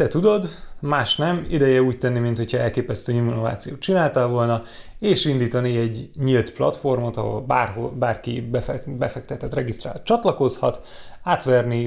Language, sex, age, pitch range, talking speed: Hungarian, male, 30-49, 120-140 Hz, 120 wpm